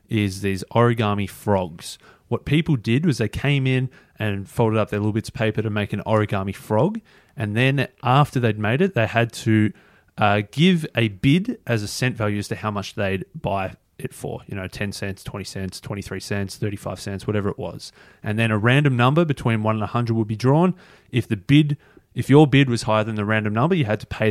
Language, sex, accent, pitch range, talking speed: English, male, Australian, 105-130 Hz, 220 wpm